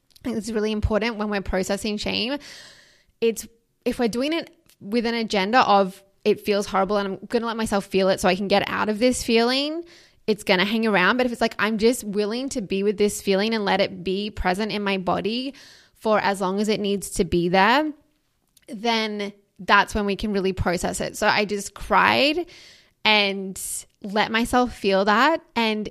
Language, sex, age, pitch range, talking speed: English, female, 20-39, 195-235 Hz, 200 wpm